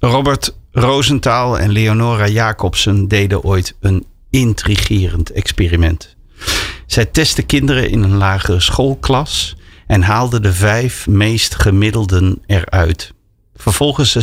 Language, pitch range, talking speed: Dutch, 95-115 Hz, 105 wpm